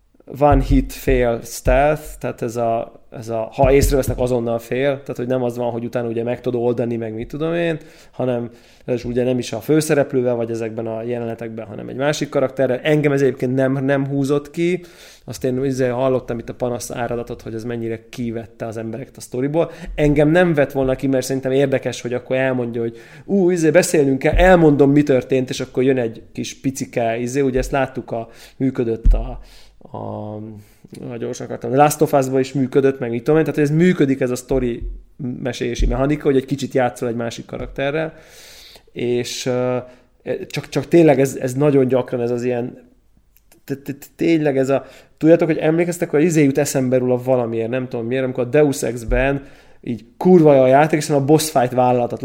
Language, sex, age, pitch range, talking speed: Hungarian, male, 20-39, 120-140 Hz, 185 wpm